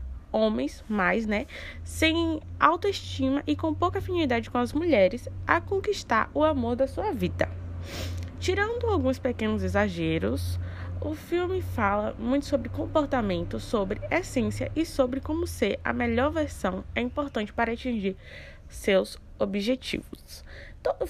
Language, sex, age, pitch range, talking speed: Portuguese, female, 10-29, 185-290 Hz, 130 wpm